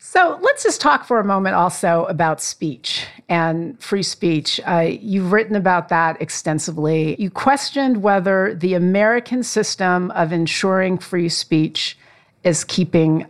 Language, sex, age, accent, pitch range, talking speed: English, female, 50-69, American, 175-210 Hz, 140 wpm